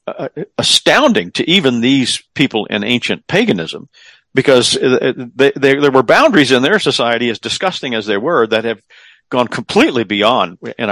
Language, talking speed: English, 155 wpm